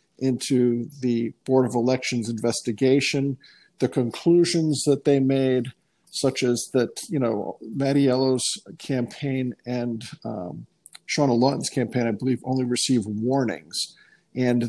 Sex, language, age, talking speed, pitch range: male, English, 50-69, 120 wpm, 120-140 Hz